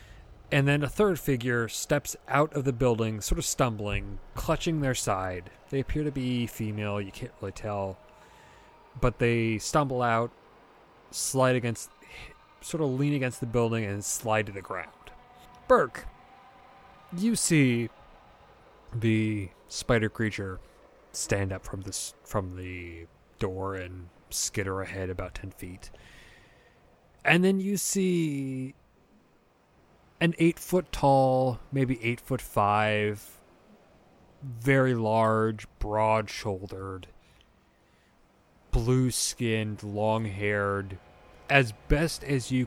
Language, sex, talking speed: English, male, 115 wpm